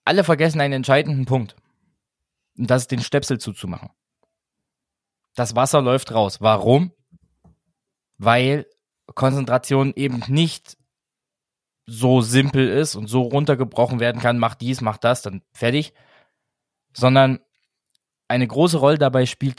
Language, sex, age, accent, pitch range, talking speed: German, male, 20-39, German, 115-140 Hz, 125 wpm